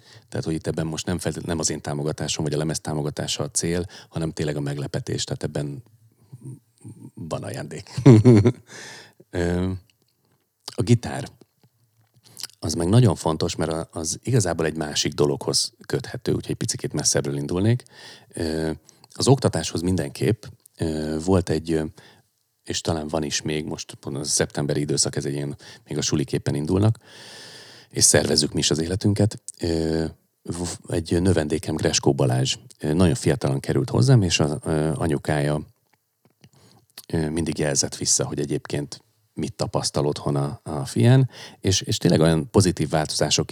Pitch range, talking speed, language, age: 80-115 Hz, 135 wpm, Hungarian, 30-49